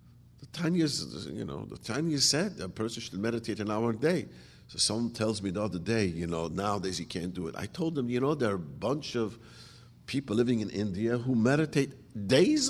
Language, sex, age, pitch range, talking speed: English, male, 50-69, 110-145 Hz, 215 wpm